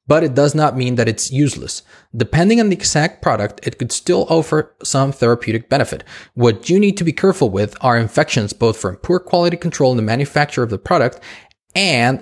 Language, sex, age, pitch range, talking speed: English, male, 20-39, 115-155 Hz, 200 wpm